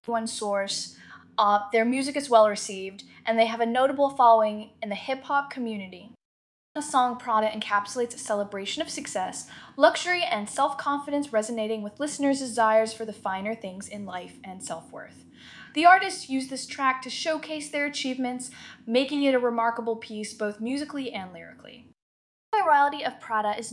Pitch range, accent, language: 205-265 Hz, American, English